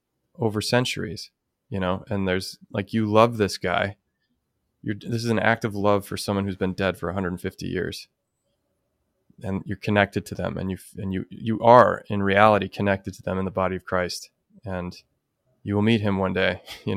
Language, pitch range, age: English, 95-110 Hz, 20-39